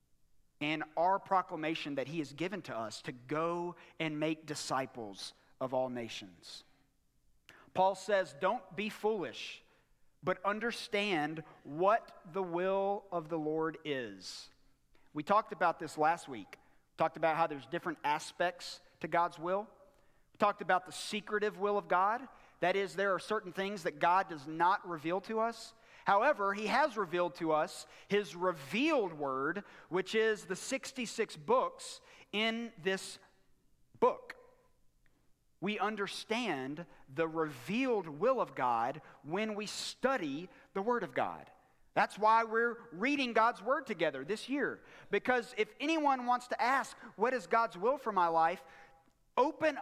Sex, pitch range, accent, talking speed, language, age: male, 165-230 Hz, American, 145 wpm, English, 40-59